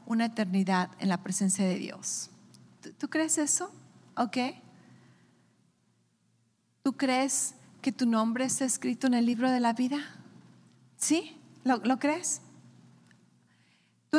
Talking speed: 125 wpm